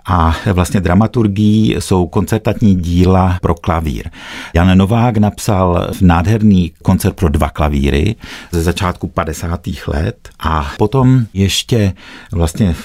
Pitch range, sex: 85-105 Hz, male